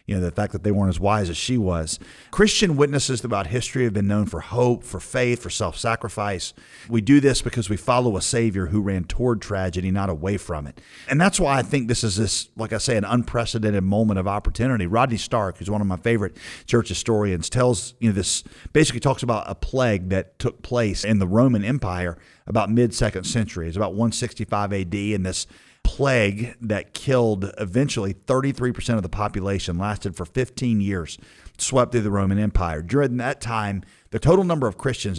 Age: 40-59